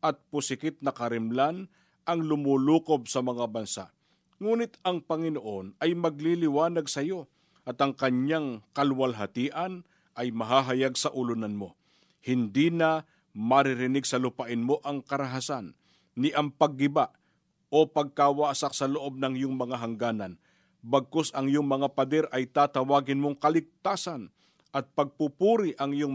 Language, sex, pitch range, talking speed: Filipino, male, 125-160 Hz, 130 wpm